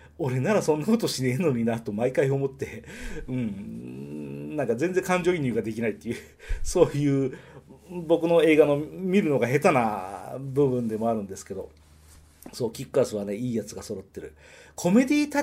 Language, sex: Japanese, male